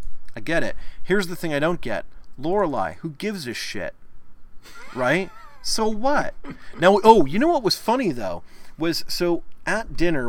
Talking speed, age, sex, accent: 170 wpm, 30-49, male, American